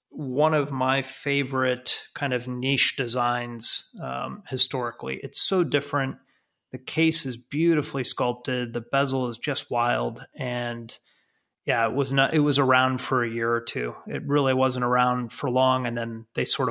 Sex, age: male, 30-49